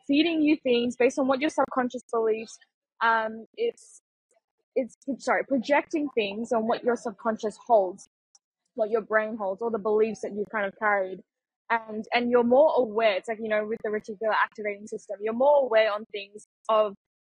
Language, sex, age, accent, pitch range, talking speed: English, female, 10-29, Australian, 215-270 Hz, 180 wpm